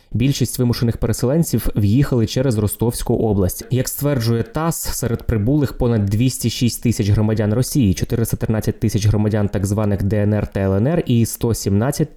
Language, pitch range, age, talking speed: Ukrainian, 105-125 Hz, 20-39, 135 wpm